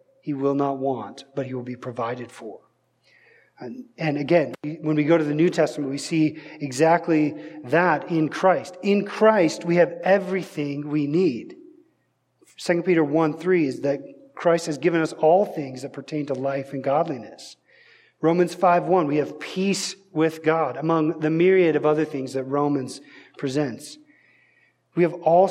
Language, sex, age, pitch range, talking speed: English, male, 40-59, 150-175 Hz, 160 wpm